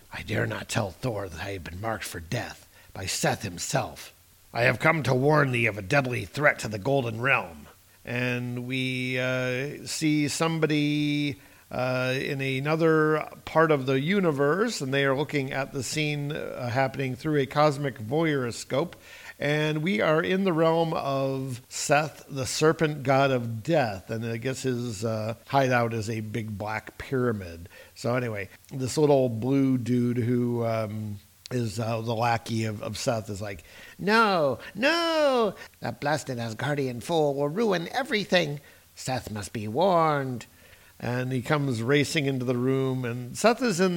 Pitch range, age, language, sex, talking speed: 115-150 Hz, 50-69, English, male, 160 wpm